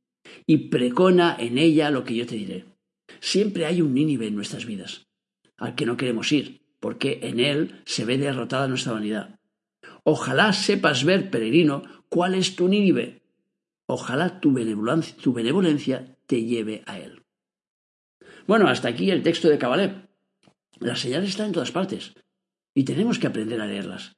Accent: Spanish